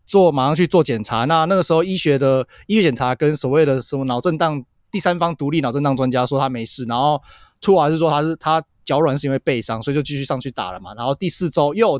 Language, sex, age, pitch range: Chinese, male, 20-39, 130-165 Hz